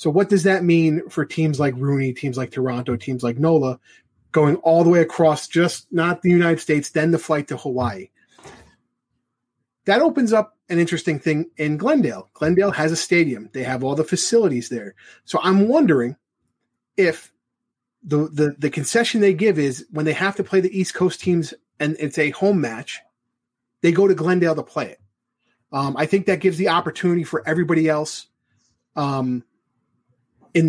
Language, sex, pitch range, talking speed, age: English, male, 135-170 Hz, 180 wpm, 30-49